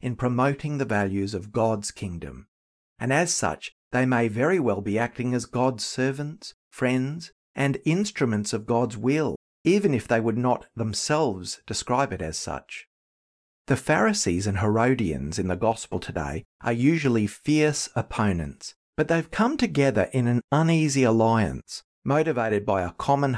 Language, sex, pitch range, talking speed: English, male, 100-135 Hz, 150 wpm